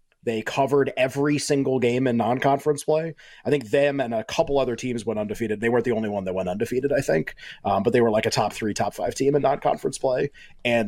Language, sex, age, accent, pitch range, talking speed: English, male, 30-49, American, 115-140 Hz, 235 wpm